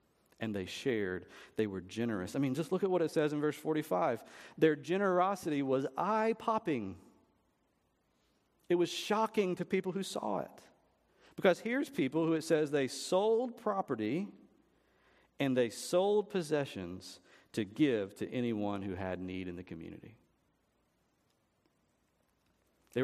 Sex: male